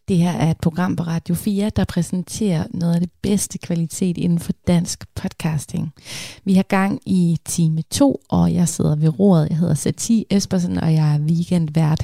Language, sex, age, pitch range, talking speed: Danish, female, 30-49, 170-210 Hz, 190 wpm